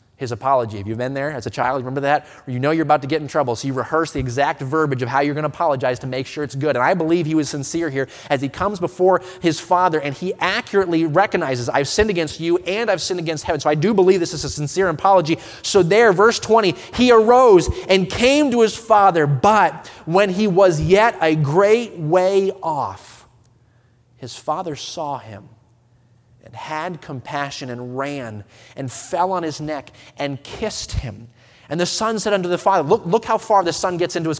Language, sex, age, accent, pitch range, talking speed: English, male, 30-49, American, 125-185 Hz, 215 wpm